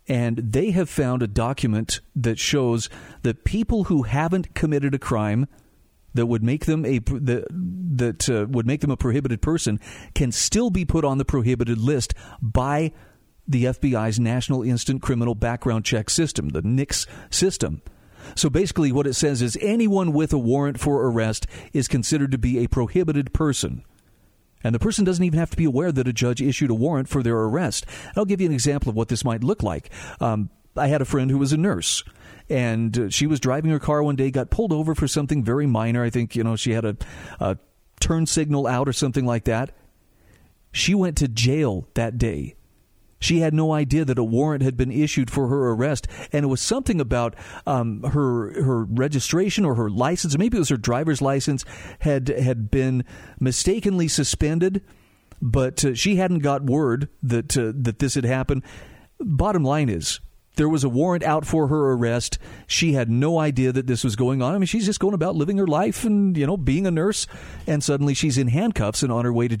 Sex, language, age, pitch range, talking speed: male, English, 50-69, 120-150 Hz, 205 wpm